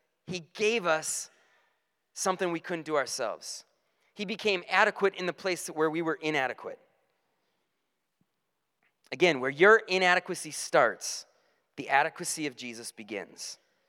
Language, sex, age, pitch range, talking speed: English, male, 30-49, 165-205 Hz, 120 wpm